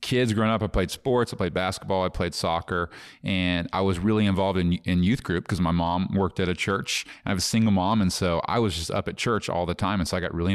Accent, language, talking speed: American, English, 280 wpm